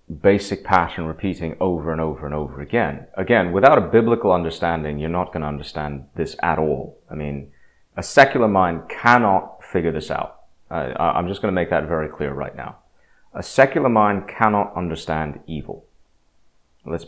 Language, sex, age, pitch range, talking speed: English, male, 30-49, 80-105 Hz, 170 wpm